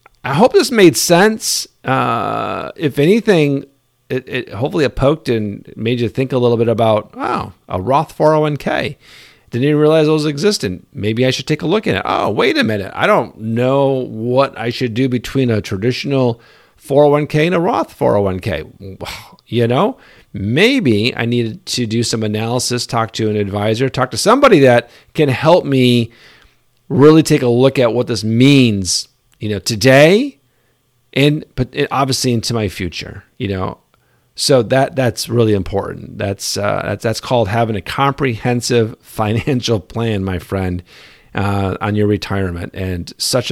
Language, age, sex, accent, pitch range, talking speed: English, 50-69, male, American, 110-140 Hz, 165 wpm